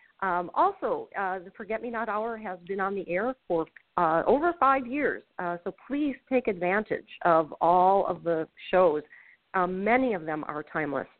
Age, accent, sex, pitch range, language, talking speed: 50-69, American, female, 170-210 Hz, English, 170 wpm